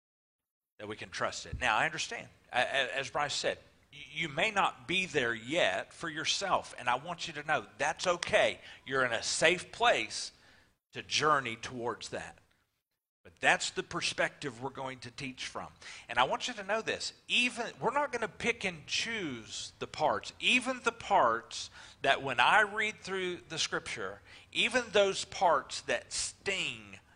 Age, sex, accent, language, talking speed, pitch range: 40-59, male, American, English, 170 wpm, 125-180 Hz